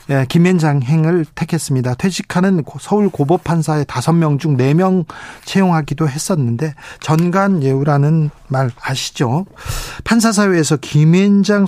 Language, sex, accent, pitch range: Korean, male, native, 140-190 Hz